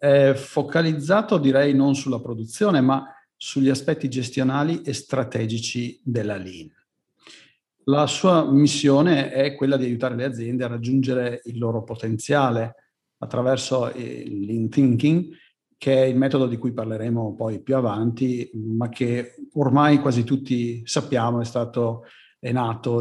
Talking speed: 135 wpm